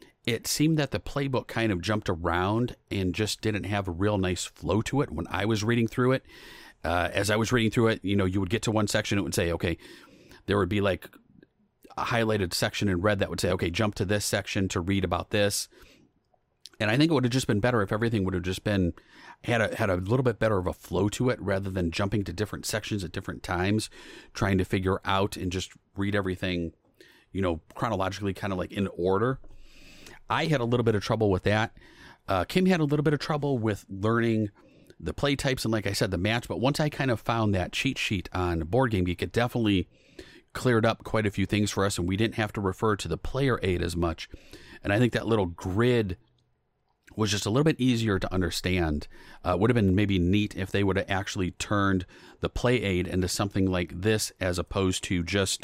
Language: English